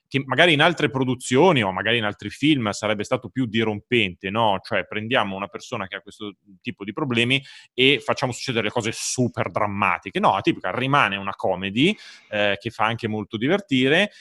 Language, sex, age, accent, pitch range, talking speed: Italian, male, 30-49, native, 105-140 Hz, 180 wpm